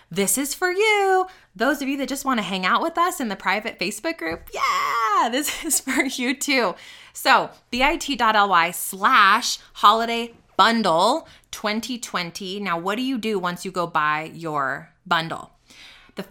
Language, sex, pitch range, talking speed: English, female, 190-255 Hz, 160 wpm